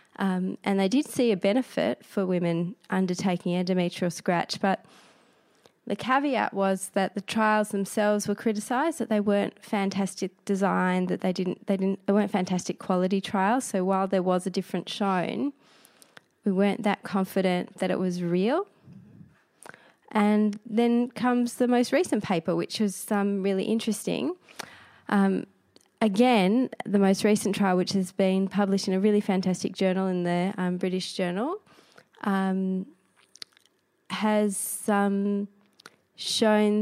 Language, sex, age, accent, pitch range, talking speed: English, female, 20-39, Australian, 185-210 Hz, 145 wpm